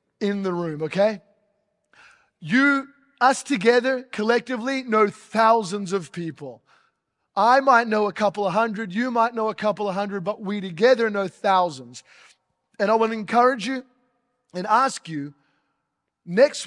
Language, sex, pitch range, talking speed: English, male, 185-235 Hz, 150 wpm